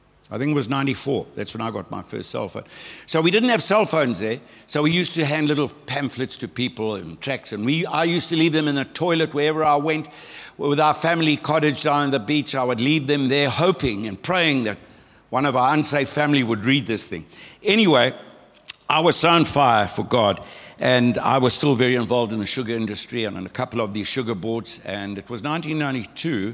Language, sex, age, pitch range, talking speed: English, male, 60-79, 110-145 Hz, 225 wpm